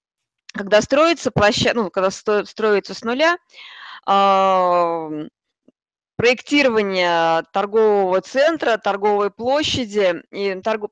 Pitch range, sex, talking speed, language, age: 185-245 Hz, female, 80 wpm, Russian, 20-39